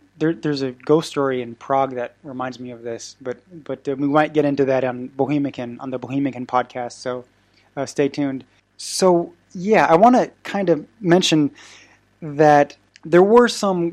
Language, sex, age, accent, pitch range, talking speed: English, male, 20-39, American, 135-160 Hz, 180 wpm